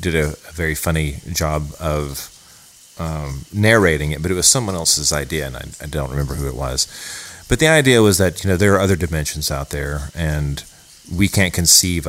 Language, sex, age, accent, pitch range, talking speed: English, male, 30-49, American, 75-90 Hz, 205 wpm